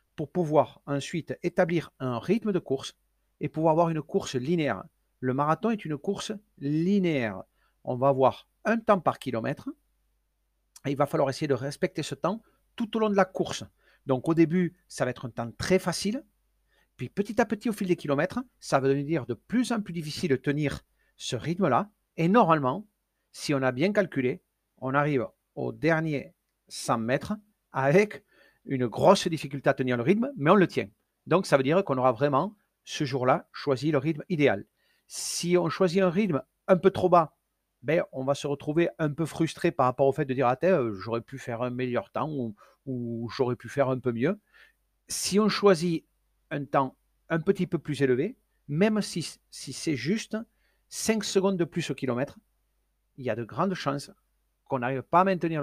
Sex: male